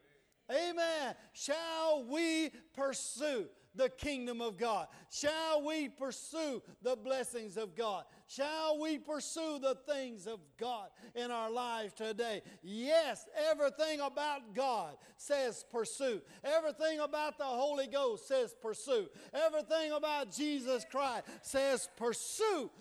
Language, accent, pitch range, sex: English, American, 225-295 Hz, male